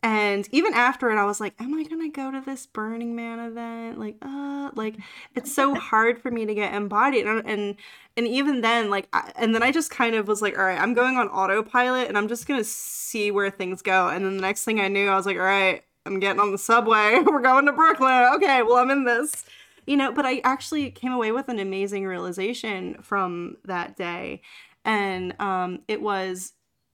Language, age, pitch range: English, 20-39, 190-240 Hz